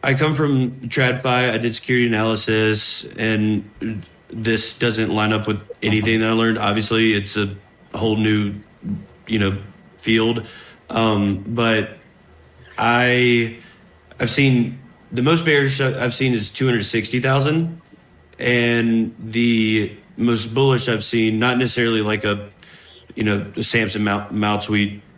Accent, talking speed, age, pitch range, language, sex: American, 130 wpm, 20-39, 105-125 Hz, English, male